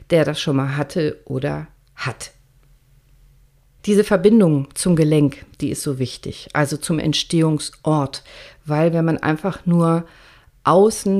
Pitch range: 145-185 Hz